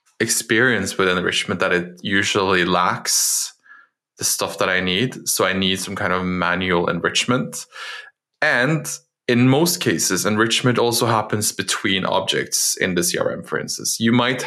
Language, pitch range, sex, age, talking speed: English, 95-120 Hz, male, 20-39, 150 wpm